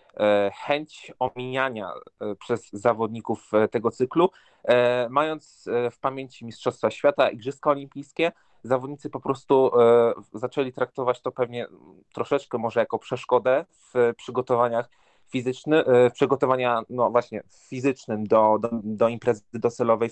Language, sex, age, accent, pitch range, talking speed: Polish, male, 20-39, native, 115-130 Hz, 110 wpm